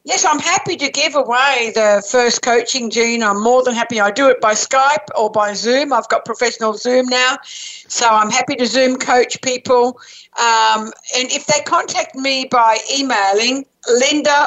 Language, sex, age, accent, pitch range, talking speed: English, female, 60-79, British, 225-275 Hz, 180 wpm